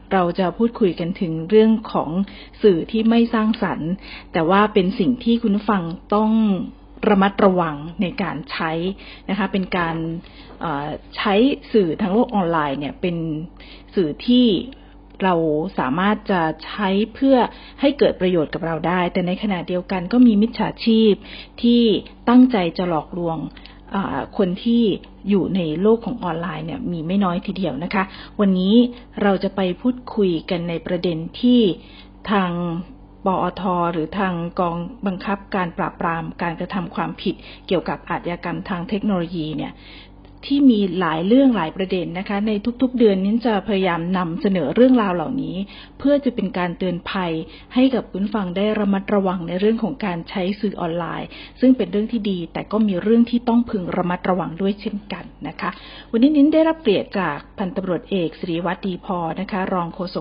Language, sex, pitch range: Thai, female, 175-220 Hz